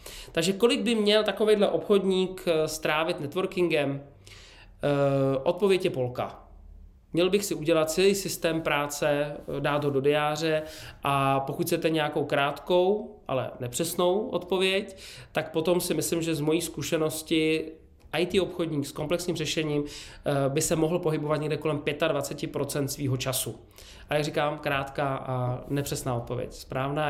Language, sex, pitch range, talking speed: Czech, male, 135-175 Hz, 135 wpm